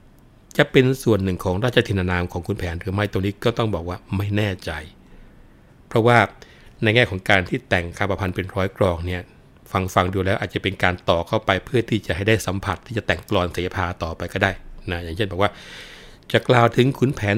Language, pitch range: Thai, 95-115 Hz